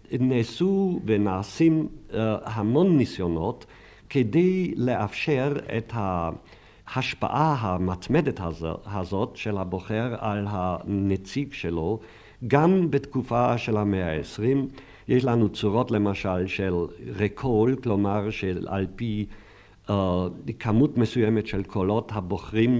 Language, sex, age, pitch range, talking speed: Hebrew, male, 50-69, 100-125 Hz, 90 wpm